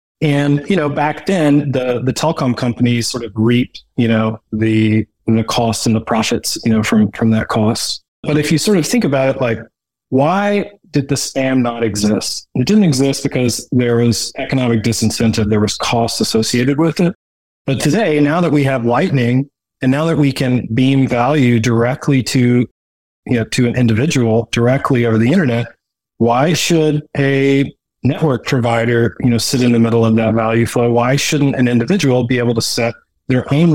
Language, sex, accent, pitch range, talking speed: English, male, American, 115-145 Hz, 185 wpm